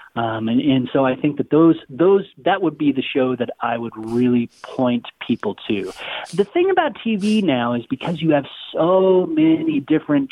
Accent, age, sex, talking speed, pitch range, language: American, 40-59, male, 190 wpm, 125-170 Hz, English